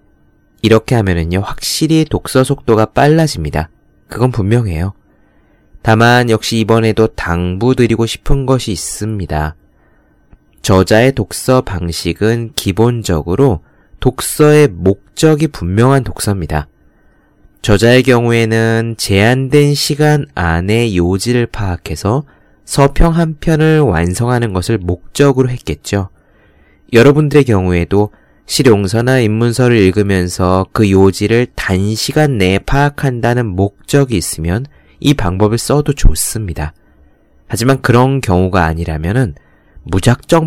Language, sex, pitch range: Korean, male, 90-130 Hz